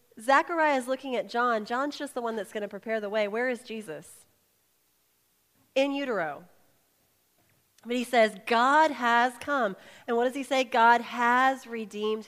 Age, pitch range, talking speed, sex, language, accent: 30-49, 190-240 Hz, 165 wpm, female, English, American